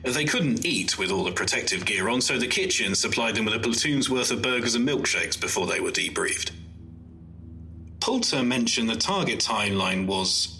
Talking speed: 180 wpm